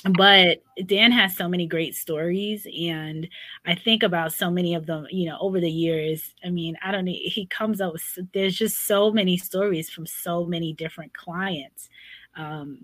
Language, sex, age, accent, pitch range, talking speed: English, female, 20-39, American, 155-180 Hz, 180 wpm